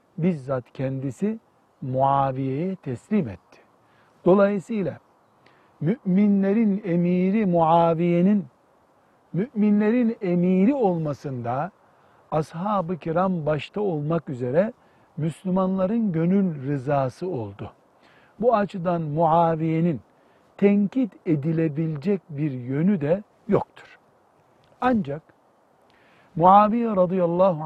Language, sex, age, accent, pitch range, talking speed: Turkish, male, 60-79, native, 150-195 Hz, 70 wpm